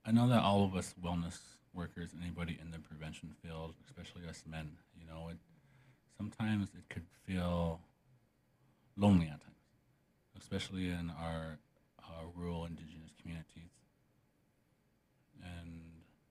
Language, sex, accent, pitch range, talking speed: English, male, American, 80-95 Hz, 125 wpm